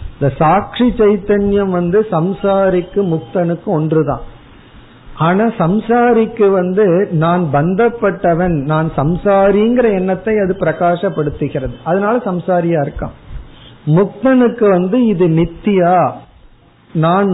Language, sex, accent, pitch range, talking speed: Tamil, male, native, 150-195 Hz, 75 wpm